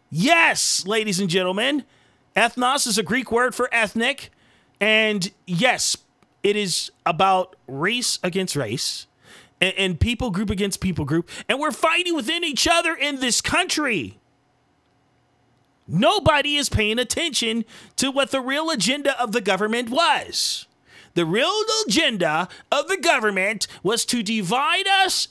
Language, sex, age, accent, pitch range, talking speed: English, male, 40-59, American, 200-320 Hz, 140 wpm